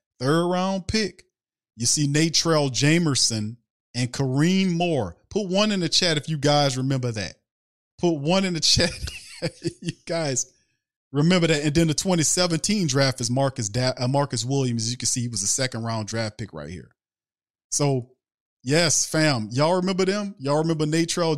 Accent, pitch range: American, 110-155 Hz